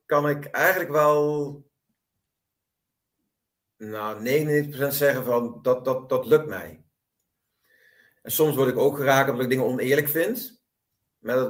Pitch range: 130-165 Hz